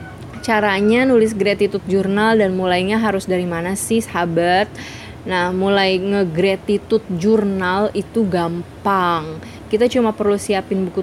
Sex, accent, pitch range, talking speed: female, native, 180-215 Hz, 120 wpm